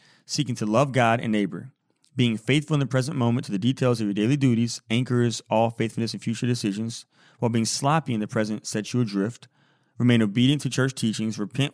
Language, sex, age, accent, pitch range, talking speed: English, male, 30-49, American, 115-145 Hz, 205 wpm